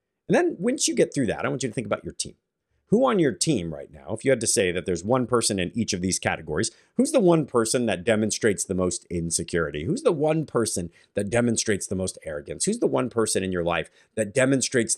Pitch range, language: 95-135 Hz, English